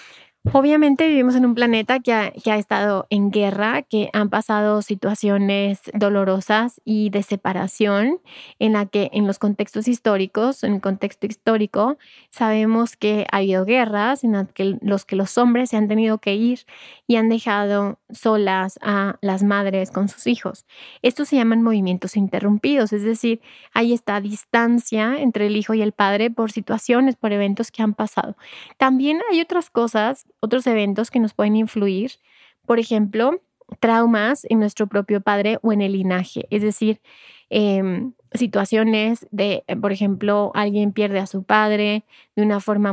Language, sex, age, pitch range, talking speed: Spanish, female, 20-39, 205-235 Hz, 160 wpm